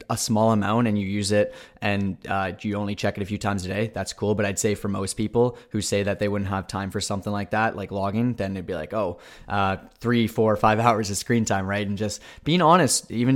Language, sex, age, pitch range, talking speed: English, male, 20-39, 100-115 Hz, 270 wpm